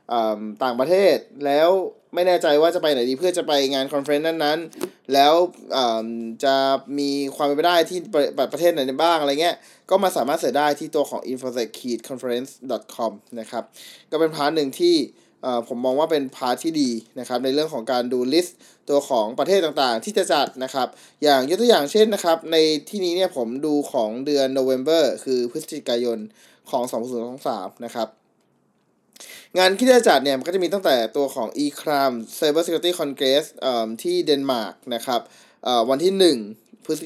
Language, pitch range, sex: Thai, 130-165 Hz, male